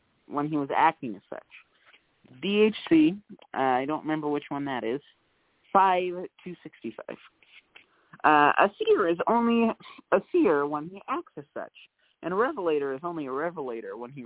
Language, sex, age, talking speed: English, male, 30-49, 150 wpm